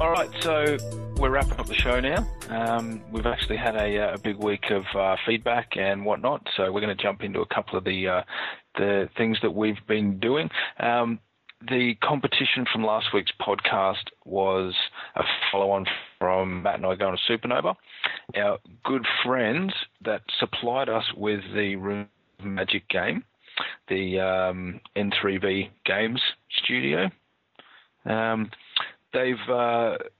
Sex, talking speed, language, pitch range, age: male, 150 wpm, English, 95-115 Hz, 30-49